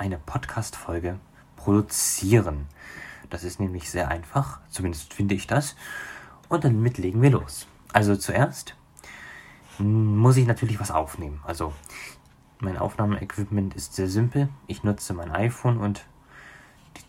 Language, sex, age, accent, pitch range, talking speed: German, male, 20-39, German, 95-120 Hz, 125 wpm